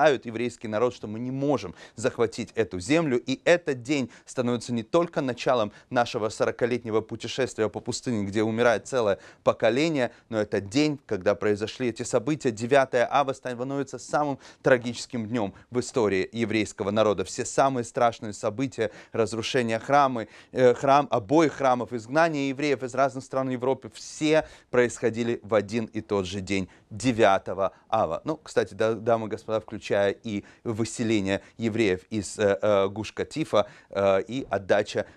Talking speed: 145 wpm